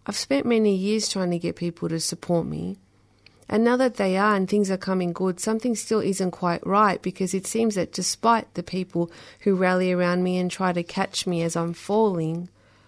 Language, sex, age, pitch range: English, female, 30-49, 170-210 Hz